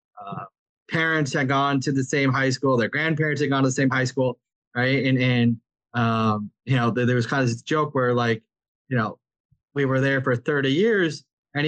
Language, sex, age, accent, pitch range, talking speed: English, male, 20-39, American, 120-140 Hz, 215 wpm